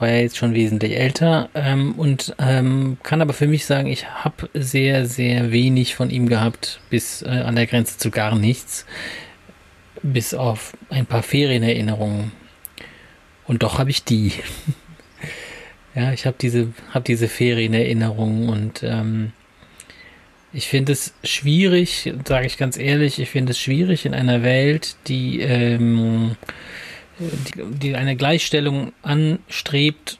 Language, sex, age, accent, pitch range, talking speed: German, male, 30-49, German, 120-145 Hz, 140 wpm